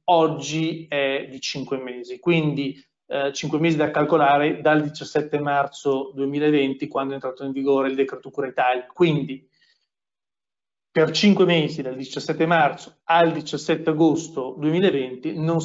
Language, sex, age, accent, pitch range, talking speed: Italian, male, 40-59, native, 140-170 Hz, 140 wpm